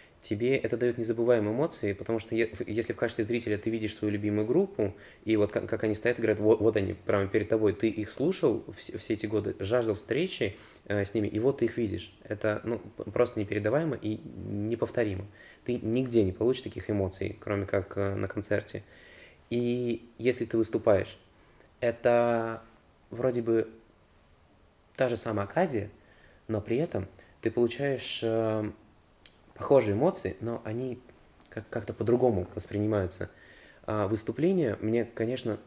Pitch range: 100-115 Hz